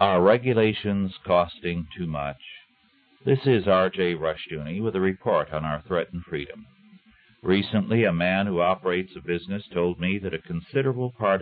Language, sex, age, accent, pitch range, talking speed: English, male, 60-79, American, 85-115 Hz, 150 wpm